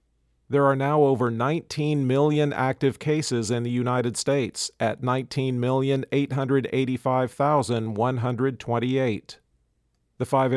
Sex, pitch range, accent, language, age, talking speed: male, 120-140 Hz, American, English, 50-69, 90 wpm